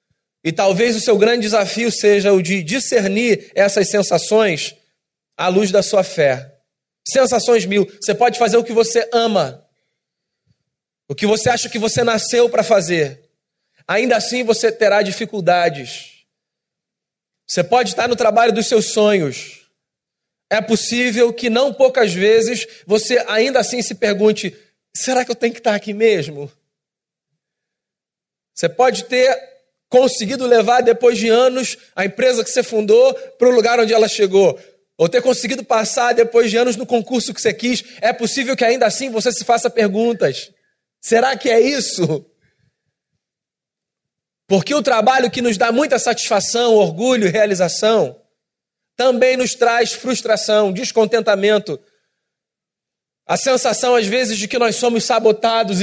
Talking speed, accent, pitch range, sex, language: 145 wpm, Brazilian, 195-240 Hz, male, Portuguese